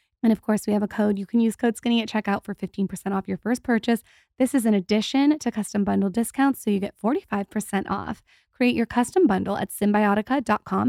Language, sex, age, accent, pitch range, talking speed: English, female, 20-39, American, 190-230 Hz, 215 wpm